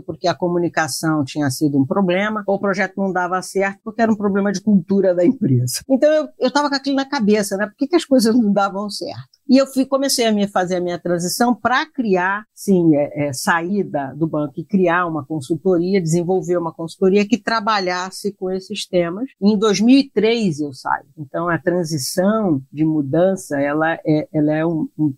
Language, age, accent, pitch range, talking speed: Portuguese, 50-69, Brazilian, 150-200 Hz, 185 wpm